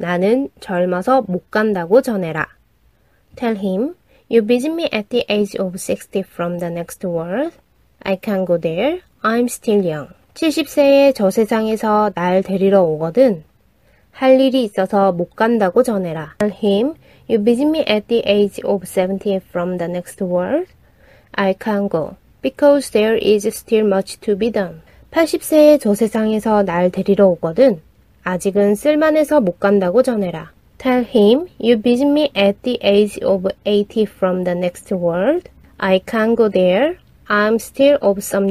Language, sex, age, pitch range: Korean, female, 20-39, 190-245 Hz